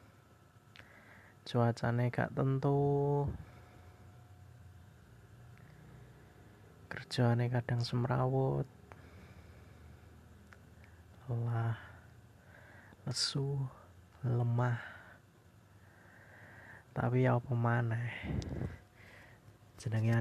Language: Indonesian